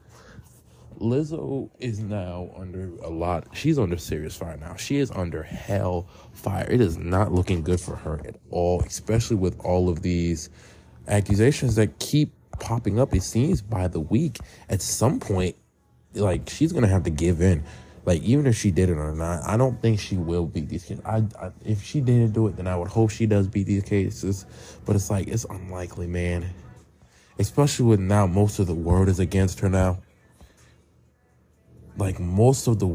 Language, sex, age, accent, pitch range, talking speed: English, male, 20-39, American, 90-110 Hz, 190 wpm